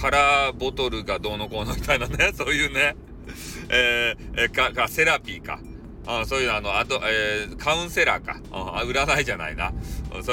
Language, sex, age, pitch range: Japanese, male, 40-59, 120-170 Hz